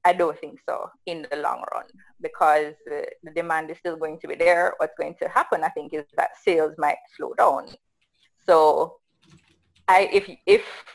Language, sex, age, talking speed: English, female, 20-39, 180 wpm